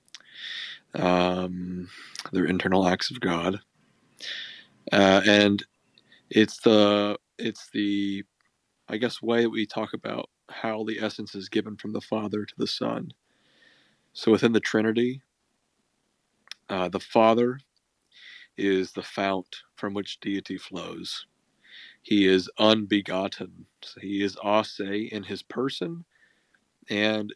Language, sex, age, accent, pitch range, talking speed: English, male, 40-59, American, 95-110 Hz, 120 wpm